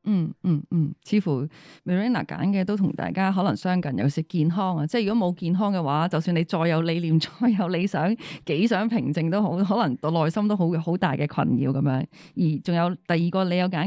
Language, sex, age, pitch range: Chinese, female, 20-39, 160-215 Hz